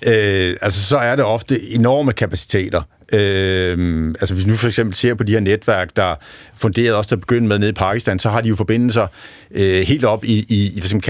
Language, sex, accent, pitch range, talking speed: Danish, male, native, 95-120 Hz, 215 wpm